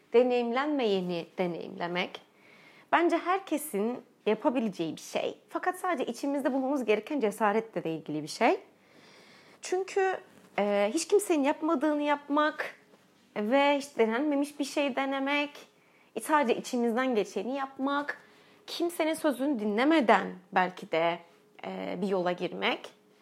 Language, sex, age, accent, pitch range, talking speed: Turkish, female, 30-49, native, 205-290 Hz, 110 wpm